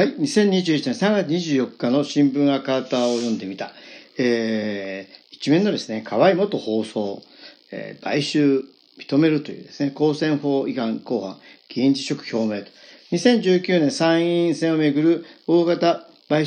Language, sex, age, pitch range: Japanese, male, 50-69, 140-200 Hz